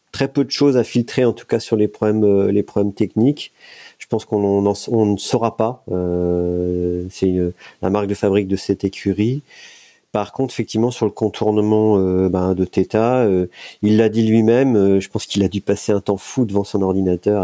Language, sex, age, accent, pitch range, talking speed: French, male, 40-59, French, 90-110 Hz, 215 wpm